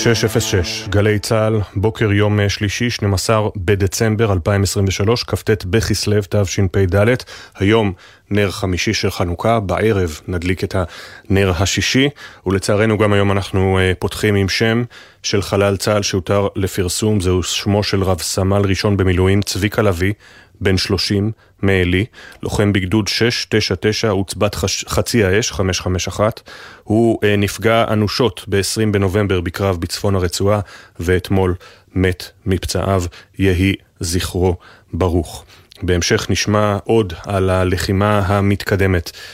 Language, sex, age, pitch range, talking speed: Hebrew, male, 30-49, 90-105 Hz, 115 wpm